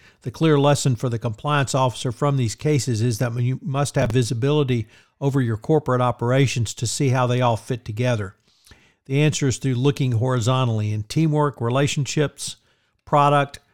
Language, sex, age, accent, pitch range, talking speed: English, male, 50-69, American, 120-140 Hz, 160 wpm